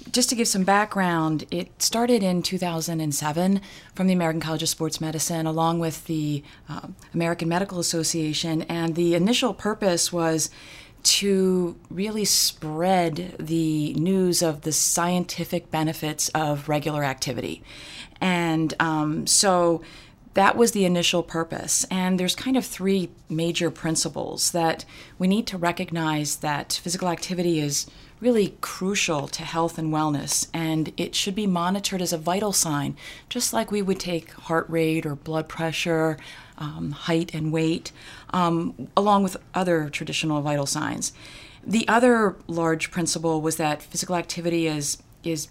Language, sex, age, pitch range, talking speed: English, female, 30-49, 160-190 Hz, 145 wpm